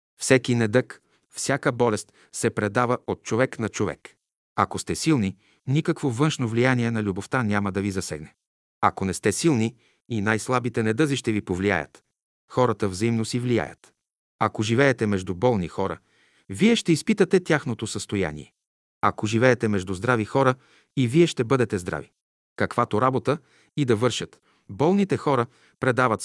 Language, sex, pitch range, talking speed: Bulgarian, male, 105-135 Hz, 145 wpm